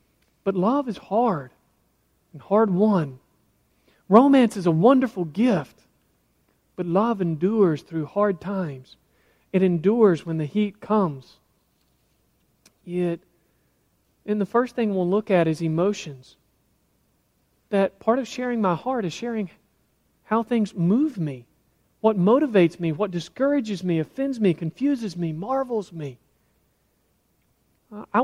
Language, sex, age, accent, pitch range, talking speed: English, male, 40-59, American, 165-205 Hz, 125 wpm